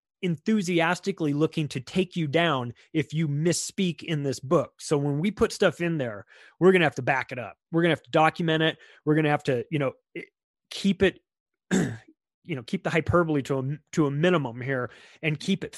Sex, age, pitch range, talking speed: male, 30-49, 140-175 Hz, 215 wpm